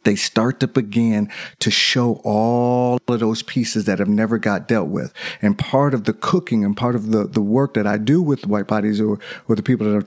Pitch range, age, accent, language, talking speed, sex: 110-140 Hz, 40-59, American, English, 230 wpm, male